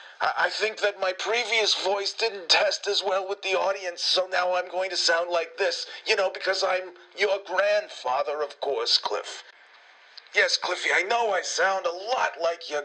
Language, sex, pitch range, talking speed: English, male, 185-220 Hz, 185 wpm